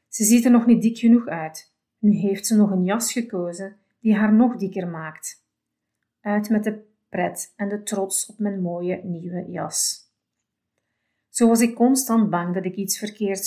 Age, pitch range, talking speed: 40-59, 180-215 Hz, 185 wpm